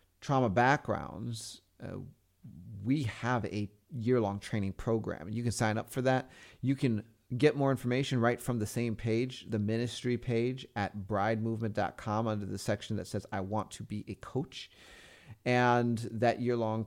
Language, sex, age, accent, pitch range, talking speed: English, male, 30-49, American, 105-125 Hz, 155 wpm